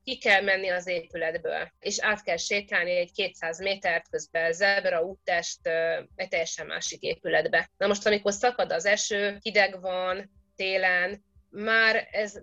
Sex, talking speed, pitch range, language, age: female, 145 wpm, 175-220 Hz, Hungarian, 30-49